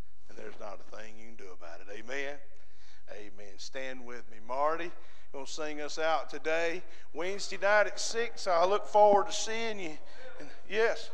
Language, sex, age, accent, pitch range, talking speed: English, male, 50-69, American, 170-245 Hz, 190 wpm